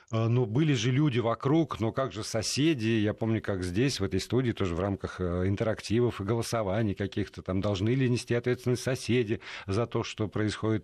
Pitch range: 105-130 Hz